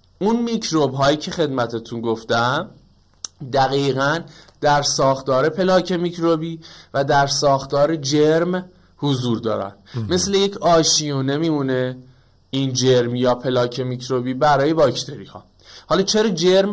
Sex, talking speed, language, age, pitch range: male, 115 wpm, Persian, 20-39, 125-165 Hz